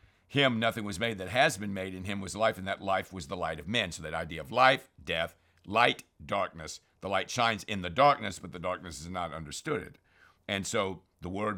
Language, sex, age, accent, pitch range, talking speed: English, male, 60-79, American, 90-110 Hz, 230 wpm